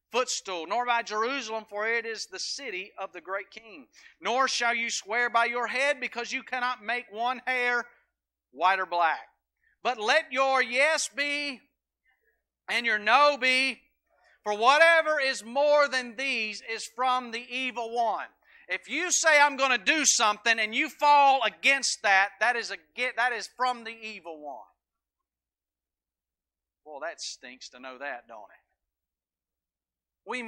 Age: 40-59